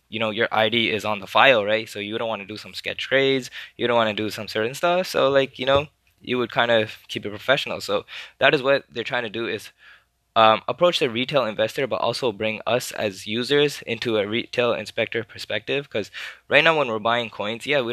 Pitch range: 105-120 Hz